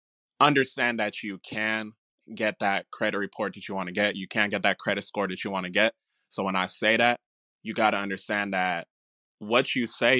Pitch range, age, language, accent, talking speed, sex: 100-115 Hz, 20-39, English, American, 220 wpm, male